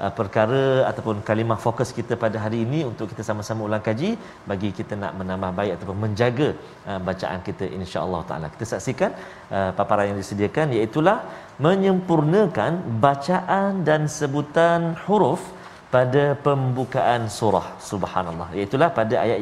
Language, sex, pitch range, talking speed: Malayalam, male, 110-175 Hz, 130 wpm